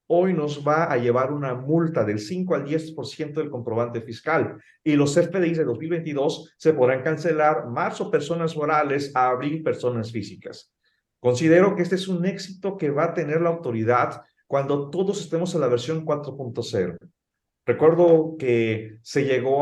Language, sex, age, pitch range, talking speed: Spanish, male, 40-59, 125-165 Hz, 160 wpm